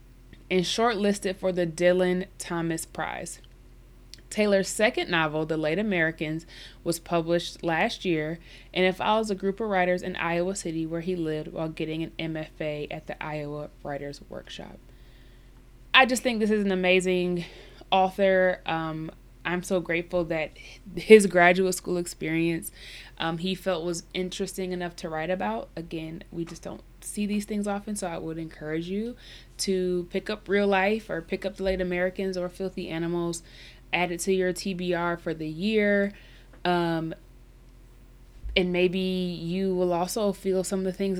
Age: 20-39